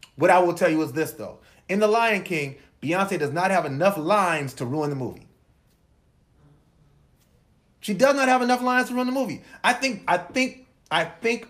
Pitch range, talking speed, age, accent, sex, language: 155-220 Hz, 200 wpm, 30-49, American, male, English